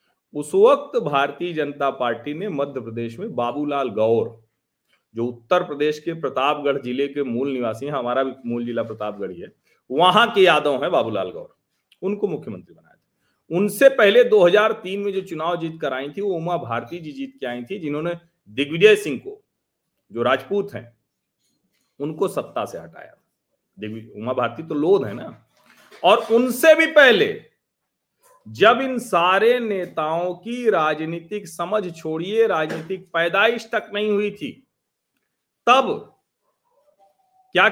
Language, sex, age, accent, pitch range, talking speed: Hindi, male, 40-59, native, 150-215 Hz, 150 wpm